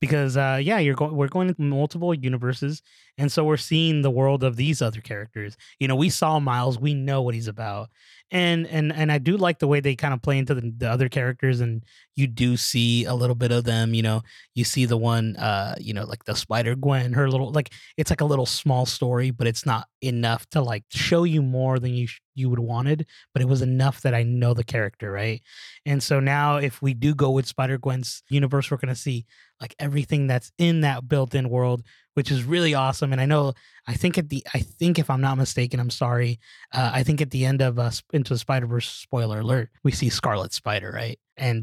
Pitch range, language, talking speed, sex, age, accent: 120-145 Hz, English, 230 wpm, male, 20-39, American